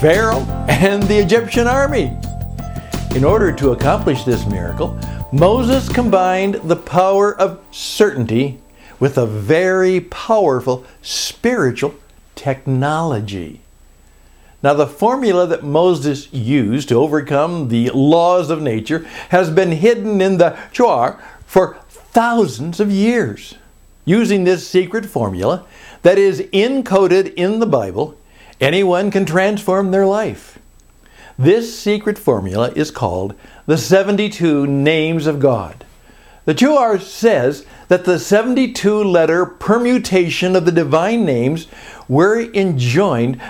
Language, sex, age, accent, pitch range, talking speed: English, male, 60-79, American, 140-200 Hz, 115 wpm